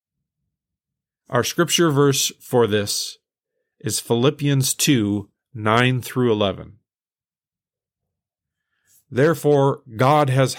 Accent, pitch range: American, 115-150 Hz